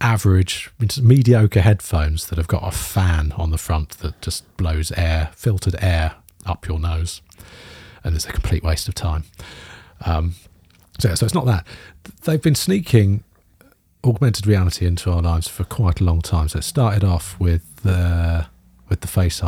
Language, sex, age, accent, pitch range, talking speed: English, male, 40-59, British, 85-100 Hz, 170 wpm